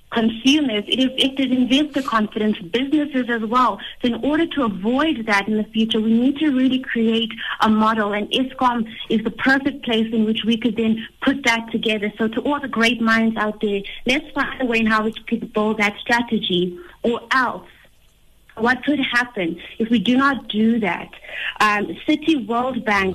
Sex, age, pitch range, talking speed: female, 30-49, 220-260 Hz, 190 wpm